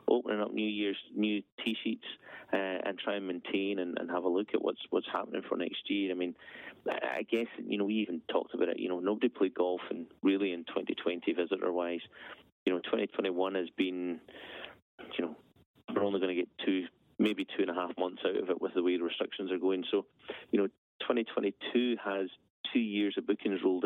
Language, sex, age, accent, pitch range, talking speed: English, male, 30-49, British, 90-105 Hz, 210 wpm